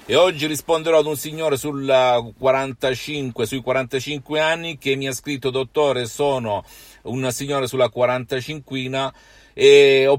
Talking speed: 135 wpm